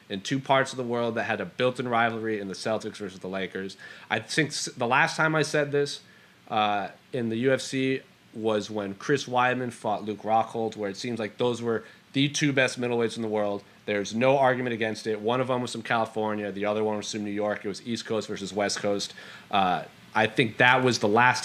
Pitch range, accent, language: 105-130 Hz, American, English